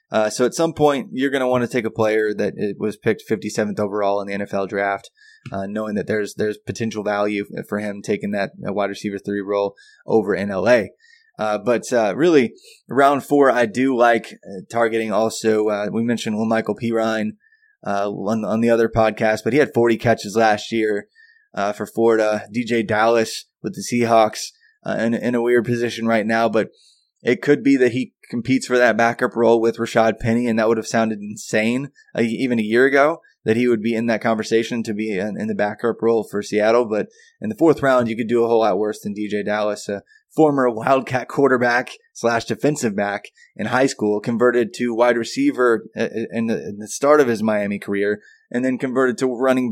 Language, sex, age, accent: English, male, 20-39, American